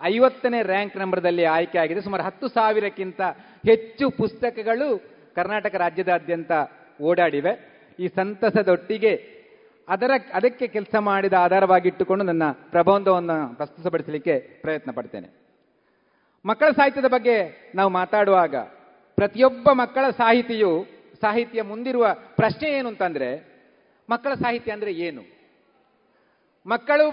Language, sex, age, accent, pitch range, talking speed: Kannada, male, 40-59, native, 190-260 Hz, 95 wpm